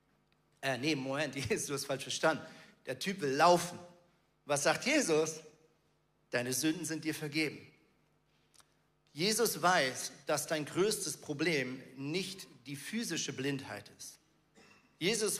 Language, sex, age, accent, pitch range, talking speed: German, male, 40-59, German, 155-245 Hz, 115 wpm